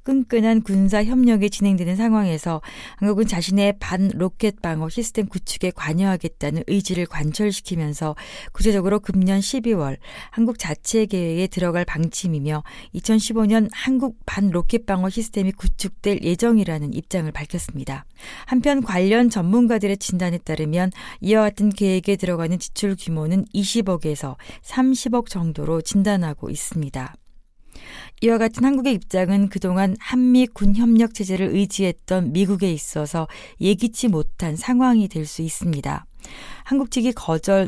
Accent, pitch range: native, 175-220 Hz